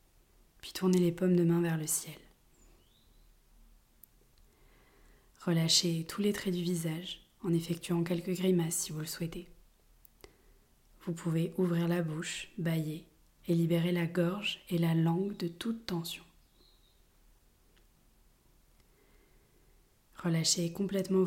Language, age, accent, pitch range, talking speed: French, 20-39, French, 165-180 Hz, 115 wpm